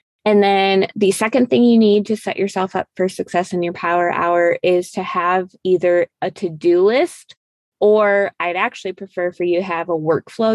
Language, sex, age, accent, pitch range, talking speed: English, female, 20-39, American, 170-200 Hz, 195 wpm